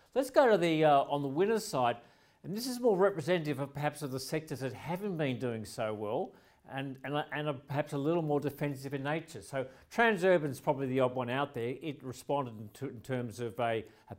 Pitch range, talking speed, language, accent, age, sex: 130-165 Hz, 230 wpm, English, Australian, 50-69, male